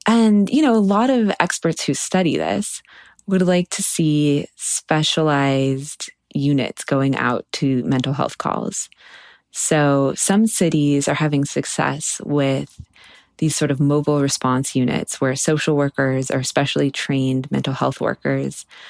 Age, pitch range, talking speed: 20-39, 135-160 Hz, 140 wpm